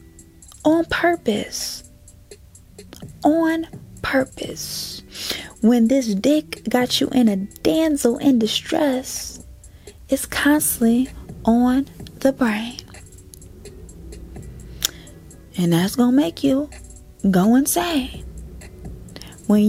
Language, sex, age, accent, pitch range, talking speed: English, female, 20-39, American, 205-255 Hz, 85 wpm